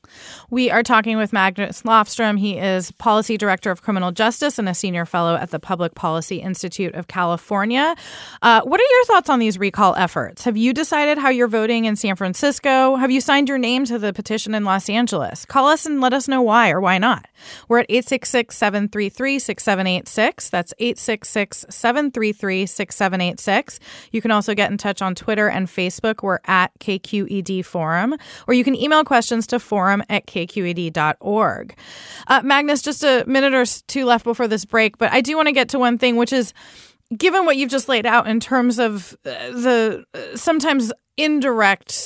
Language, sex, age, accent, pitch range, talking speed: English, female, 20-39, American, 195-255 Hz, 175 wpm